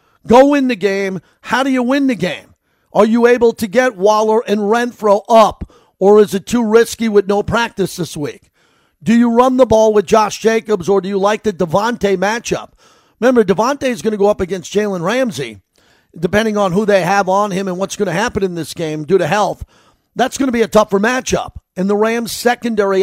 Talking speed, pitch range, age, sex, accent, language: 215 wpm, 190-230 Hz, 50-69, male, American, English